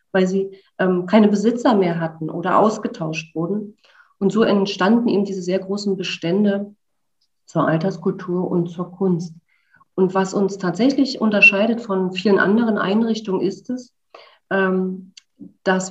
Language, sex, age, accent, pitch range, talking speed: German, female, 40-59, German, 185-220 Hz, 135 wpm